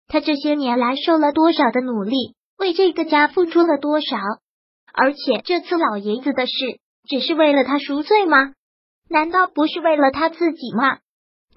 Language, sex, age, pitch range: Chinese, male, 20-39, 270-330 Hz